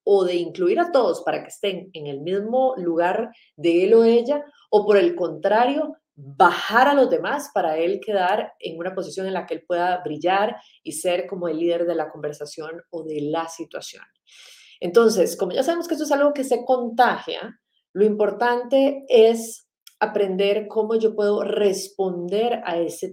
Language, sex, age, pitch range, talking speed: Spanish, female, 30-49, 175-225 Hz, 180 wpm